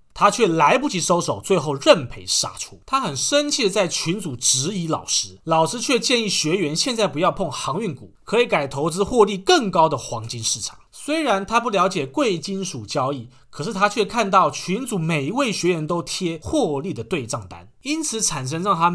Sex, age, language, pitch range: male, 30-49, Chinese, 145-205 Hz